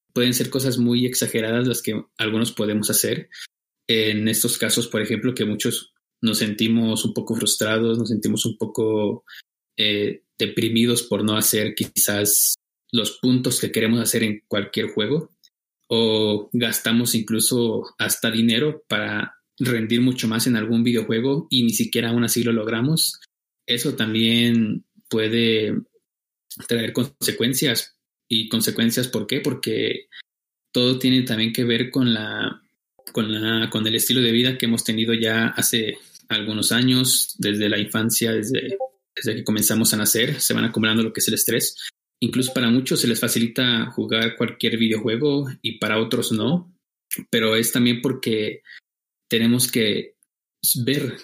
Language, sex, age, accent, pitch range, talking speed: Spanish, male, 20-39, Mexican, 110-120 Hz, 150 wpm